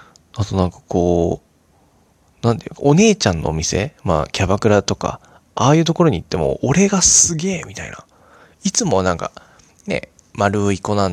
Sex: male